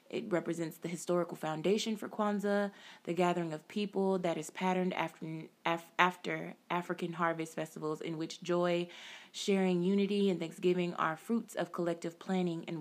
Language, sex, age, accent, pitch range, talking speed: English, female, 20-39, American, 165-195 Hz, 155 wpm